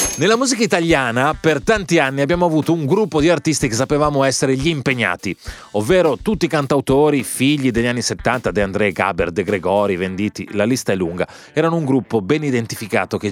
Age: 30-49